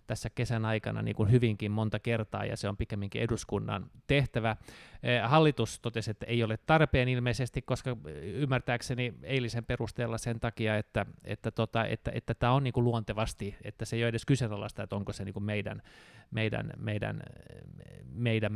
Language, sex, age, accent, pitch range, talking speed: Finnish, male, 20-39, native, 105-125 Hz, 170 wpm